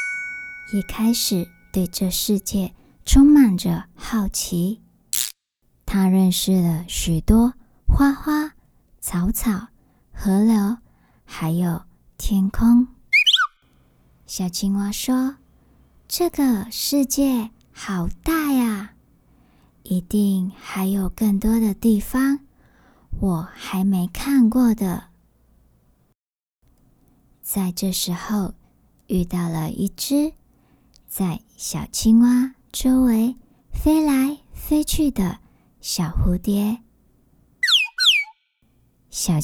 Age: 20-39